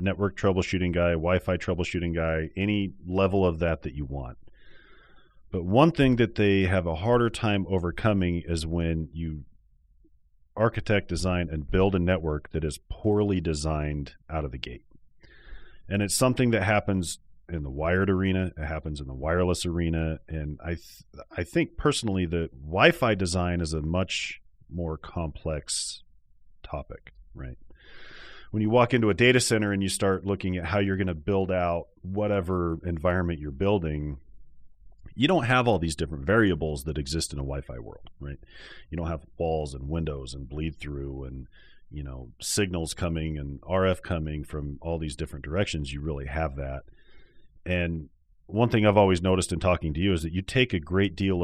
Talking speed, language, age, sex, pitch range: 175 wpm, English, 40-59, male, 75-95 Hz